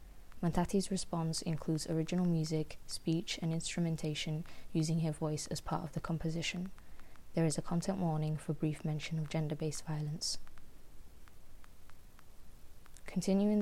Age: 20-39